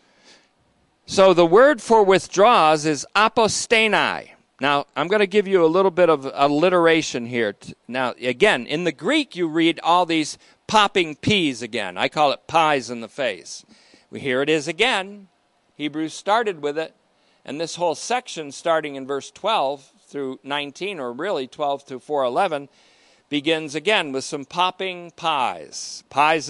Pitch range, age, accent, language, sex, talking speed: 145-200 Hz, 50-69, American, English, male, 155 wpm